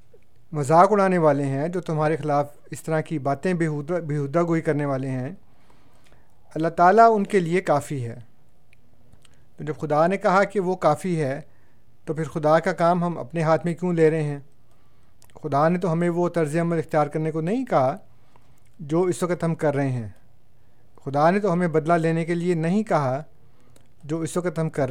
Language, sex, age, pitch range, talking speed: Urdu, male, 50-69, 140-175 Hz, 195 wpm